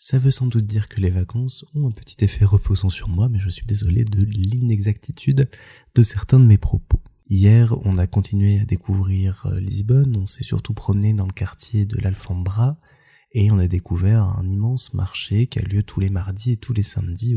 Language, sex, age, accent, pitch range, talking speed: French, male, 20-39, French, 95-115 Hz, 205 wpm